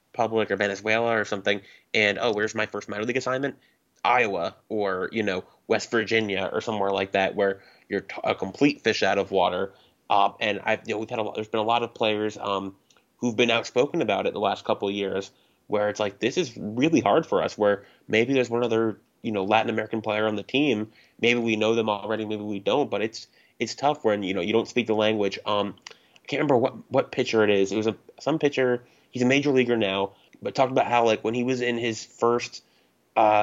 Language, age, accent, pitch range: English, 20-39, American, 105-120 Hz